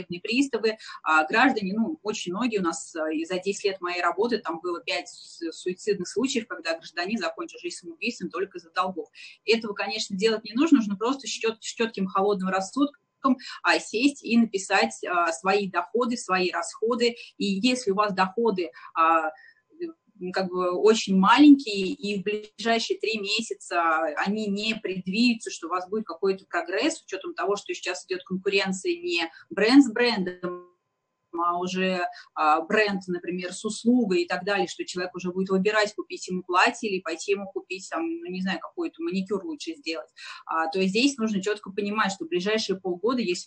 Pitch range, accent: 180-225 Hz, native